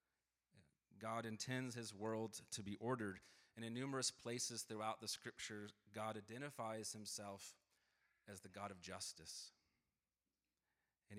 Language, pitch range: English, 105-125 Hz